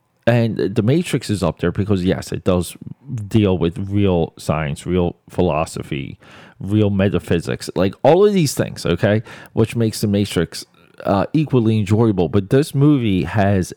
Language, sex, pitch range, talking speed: English, male, 95-120 Hz, 155 wpm